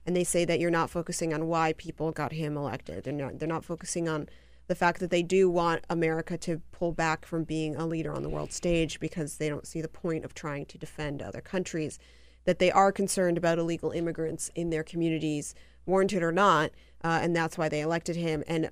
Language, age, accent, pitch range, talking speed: English, 30-49, American, 155-180 Hz, 225 wpm